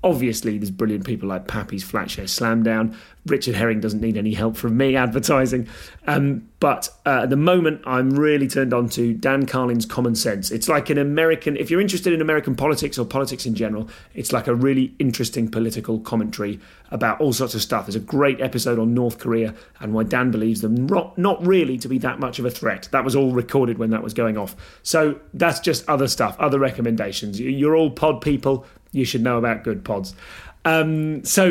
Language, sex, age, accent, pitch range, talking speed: English, male, 30-49, British, 115-155 Hz, 205 wpm